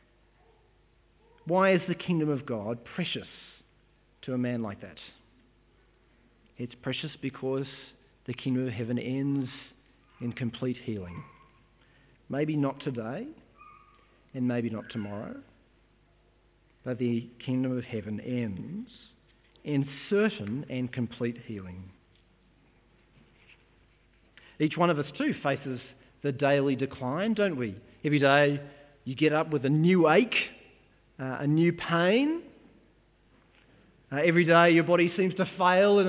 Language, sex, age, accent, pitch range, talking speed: English, male, 40-59, Australian, 125-170 Hz, 125 wpm